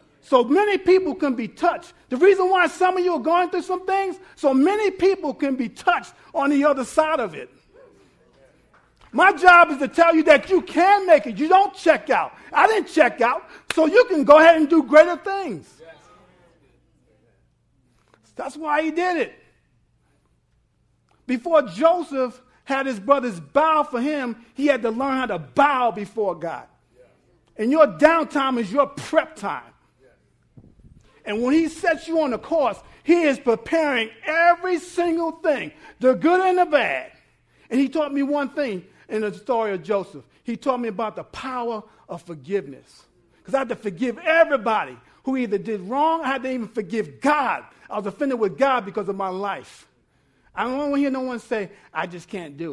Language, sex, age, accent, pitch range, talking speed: English, male, 50-69, American, 225-330 Hz, 185 wpm